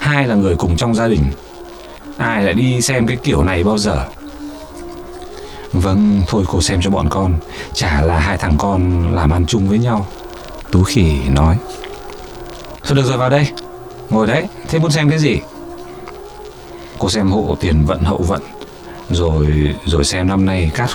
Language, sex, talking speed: Vietnamese, male, 175 wpm